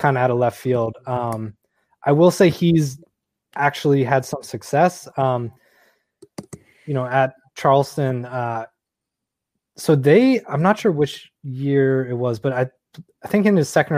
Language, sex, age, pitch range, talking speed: English, male, 20-39, 120-145 Hz, 160 wpm